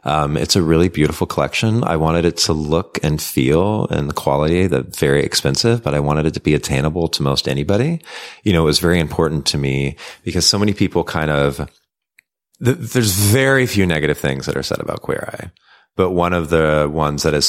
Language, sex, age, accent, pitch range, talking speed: English, male, 30-49, American, 75-90 Hz, 210 wpm